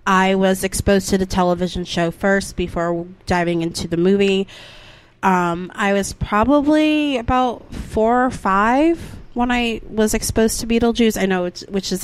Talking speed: 160 wpm